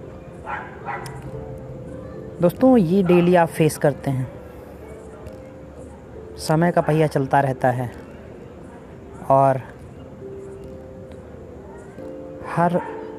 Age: 30-49